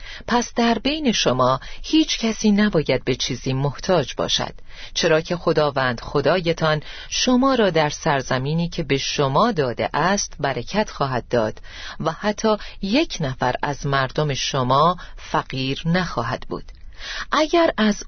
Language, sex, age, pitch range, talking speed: Persian, female, 40-59, 145-215 Hz, 130 wpm